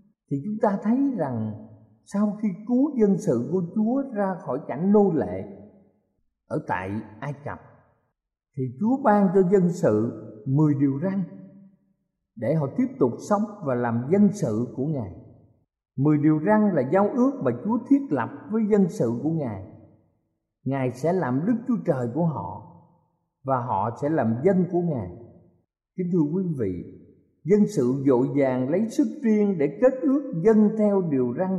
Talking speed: 170 wpm